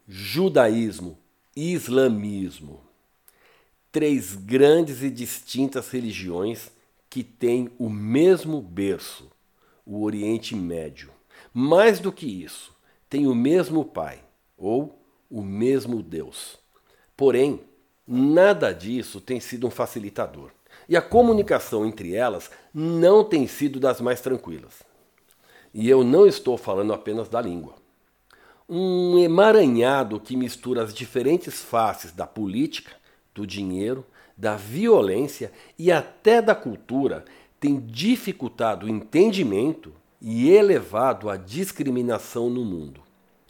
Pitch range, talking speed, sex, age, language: 105-160 Hz, 110 wpm, male, 60-79, Portuguese